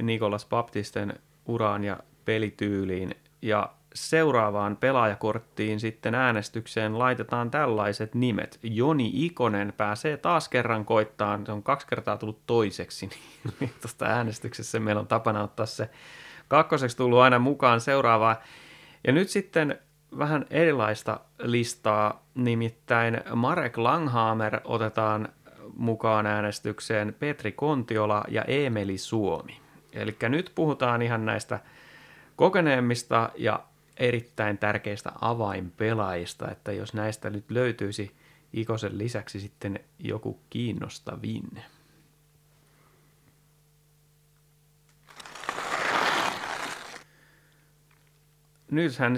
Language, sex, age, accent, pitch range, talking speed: Finnish, male, 30-49, native, 105-145 Hz, 95 wpm